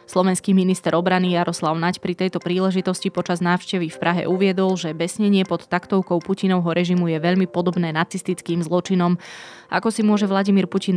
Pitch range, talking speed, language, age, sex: 165-185 Hz, 160 wpm, Slovak, 20-39, female